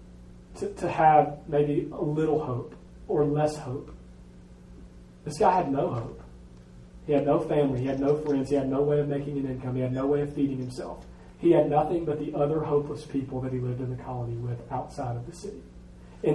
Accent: American